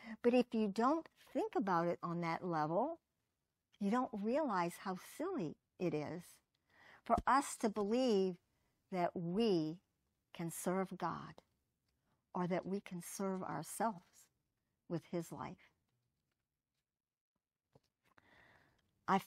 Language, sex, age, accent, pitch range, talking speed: English, male, 50-69, American, 175-215 Hz, 110 wpm